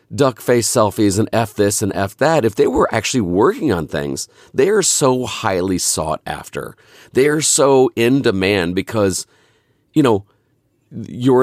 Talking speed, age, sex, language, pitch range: 160 wpm, 40-59, male, English, 95-130 Hz